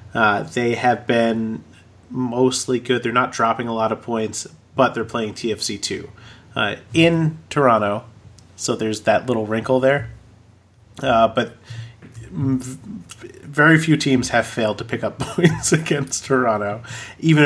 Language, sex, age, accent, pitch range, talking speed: English, male, 30-49, American, 105-130 Hz, 140 wpm